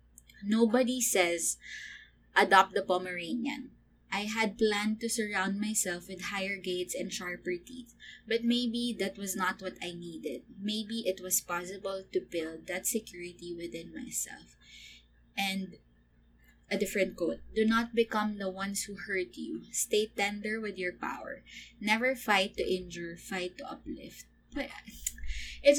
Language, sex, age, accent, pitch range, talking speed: English, female, 20-39, Filipino, 175-230 Hz, 140 wpm